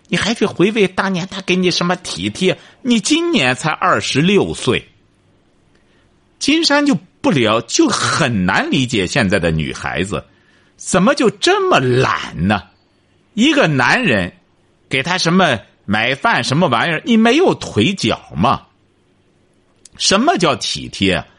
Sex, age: male, 50-69